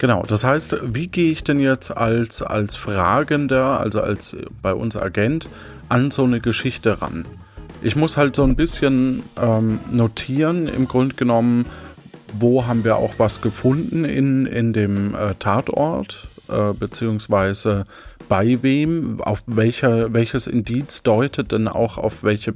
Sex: male